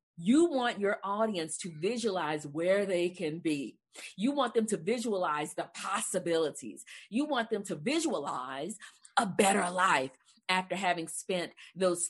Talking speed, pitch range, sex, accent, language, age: 145 wpm, 165-225 Hz, female, American, English, 40-59